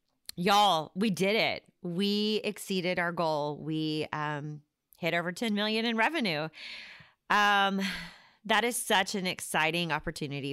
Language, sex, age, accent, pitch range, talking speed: English, female, 30-49, American, 155-200 Hz, 130 wpm